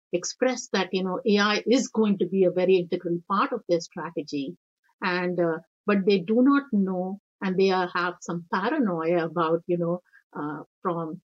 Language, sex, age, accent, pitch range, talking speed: English, female, 50-69, Indian, 175-230 Hz, 175 wpm